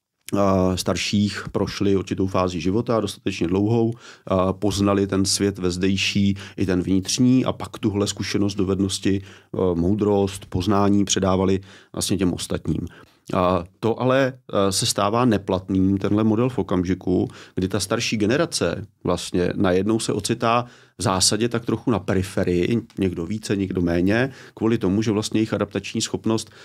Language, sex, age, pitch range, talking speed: Czech, male, 30-49, 95-110 Hz, 135 wpm